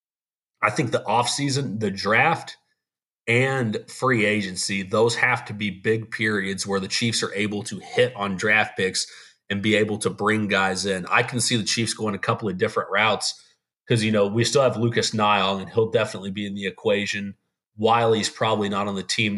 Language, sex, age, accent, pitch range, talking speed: English, male, 30-49, American, 100-115 Hz, 200 wpm